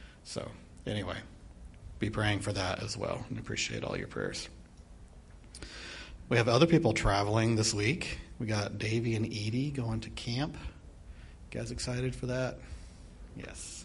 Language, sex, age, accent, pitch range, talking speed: English, male, 40-59, American, 85-110 Hz, 145 wpm